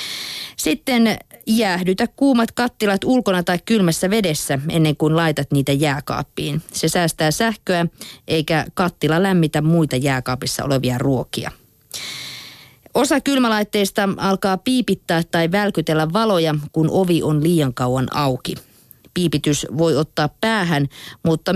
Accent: native